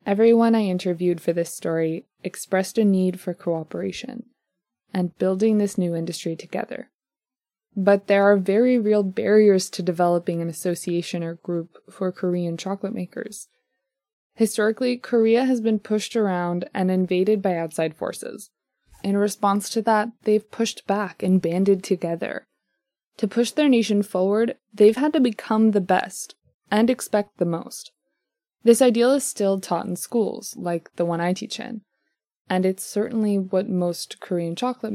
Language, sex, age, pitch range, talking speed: English, female, 20-39, 180-220 Hz, 155 wpm